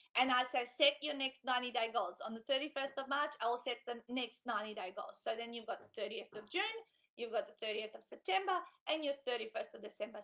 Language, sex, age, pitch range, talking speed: English, female, 30-49, 230-285 Hz, 230 wpm